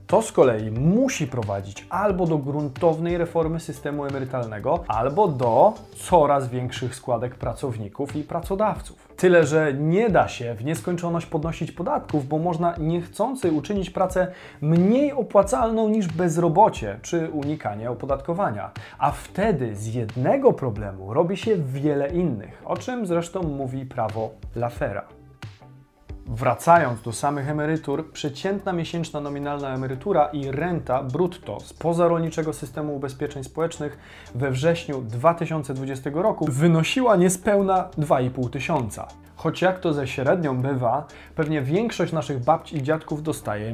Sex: male